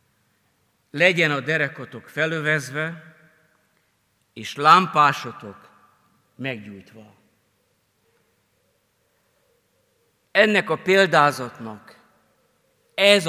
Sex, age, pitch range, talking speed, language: male, 50-69, 110-185 Hz, 50 wpm, Hungarian